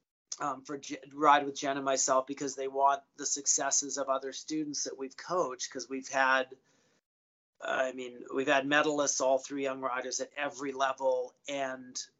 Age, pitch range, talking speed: 40-59, 135-160 Hz, 165 wpm